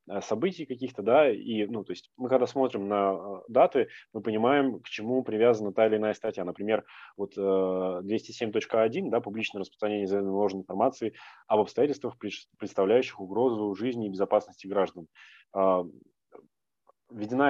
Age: 20-39